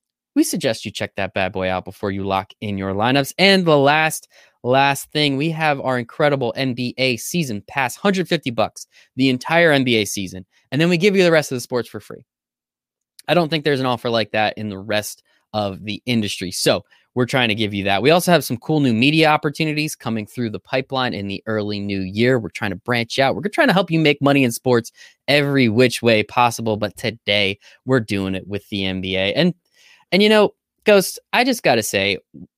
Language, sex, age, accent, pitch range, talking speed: English, male, 20-39, American, 105-170 Hz, 215 wpm